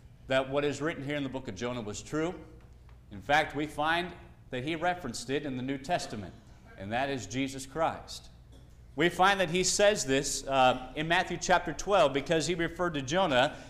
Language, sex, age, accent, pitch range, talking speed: English, male, 40-59, American, 140-185 Hz, 195 wpm